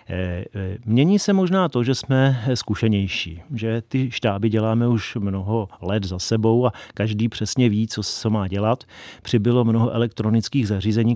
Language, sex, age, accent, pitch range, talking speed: Czech, male, 40-59, native, 105-115 Hz, 150 wpm